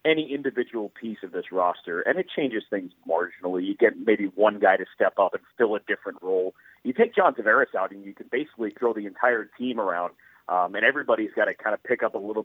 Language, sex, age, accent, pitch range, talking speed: English, male, 30-49, American, 105-135 Hz, 235 wpm